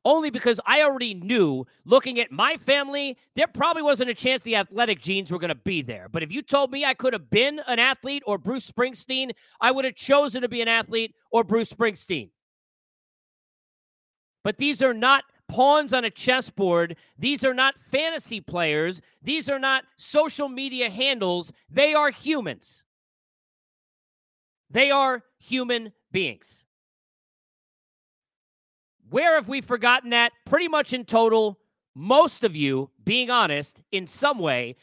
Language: English